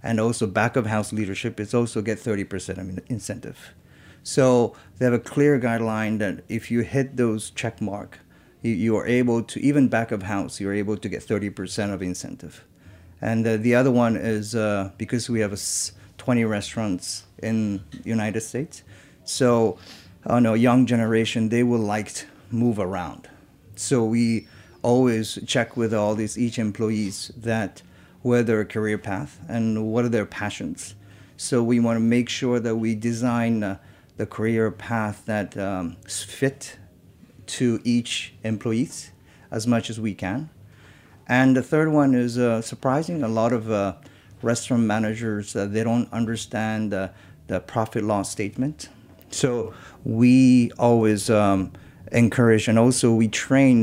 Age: 40-59